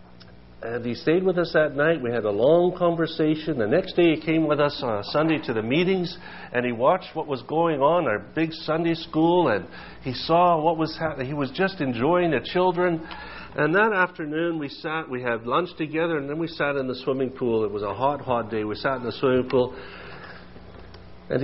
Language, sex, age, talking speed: English, male, 50-69, 220 wpm